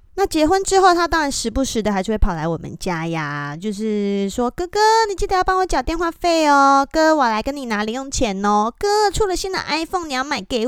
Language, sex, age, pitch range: Chinese, female, 20-39, 200-285 Hz